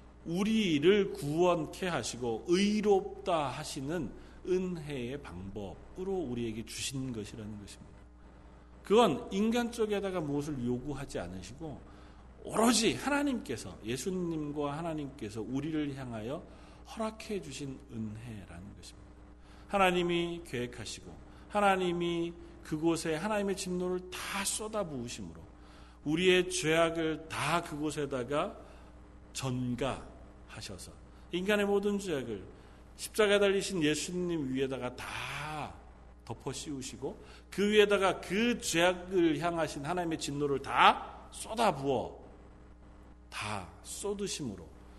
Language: Korean